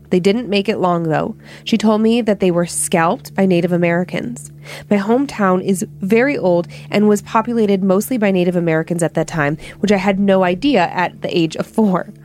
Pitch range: 170-220 Hz